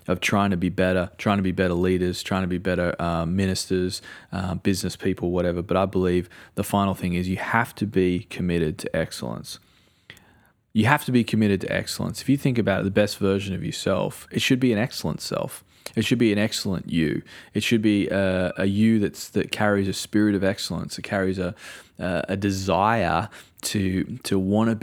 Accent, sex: Australian, male